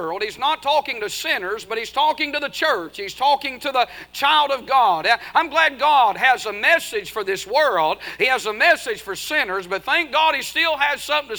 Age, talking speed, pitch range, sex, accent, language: 50-69, 210 wpm, 255-300 Hz, male, American, English